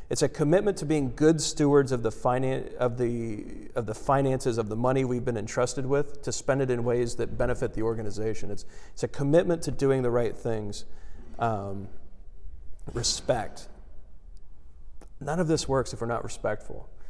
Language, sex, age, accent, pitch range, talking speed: English, male, 40-59, American, 110-140 Hz, 175 wpm